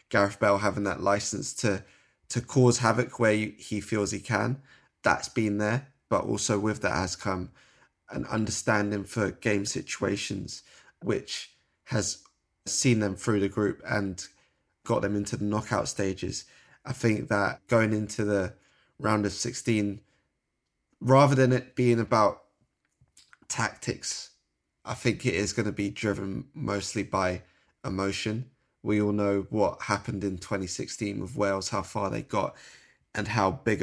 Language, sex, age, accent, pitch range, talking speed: English, male, 20-39, British, 100-110 Hz, 150 wpm